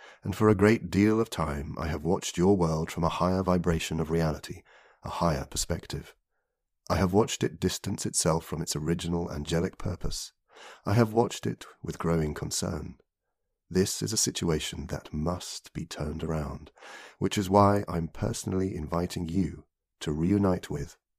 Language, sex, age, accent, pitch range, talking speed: English, male, 40-59, British, 80-100 Hz, 165 wpm